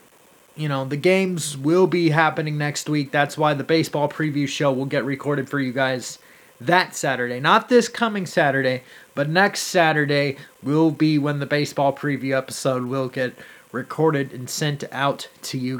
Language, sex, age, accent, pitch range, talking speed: English, male, 30-49, American, 145-235 Hz, 170 wpm